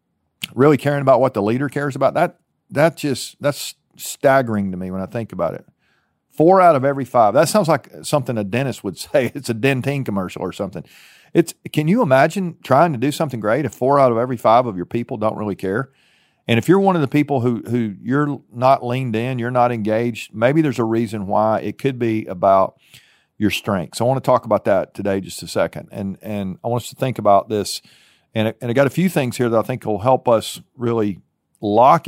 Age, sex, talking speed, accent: 40-59, male, 220 wpm, American